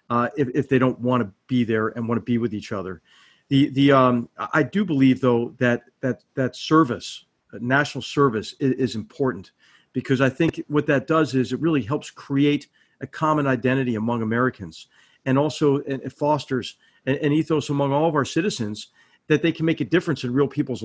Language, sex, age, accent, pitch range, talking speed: English, male, 40-59, American, 125-145 Hz, 205 wpm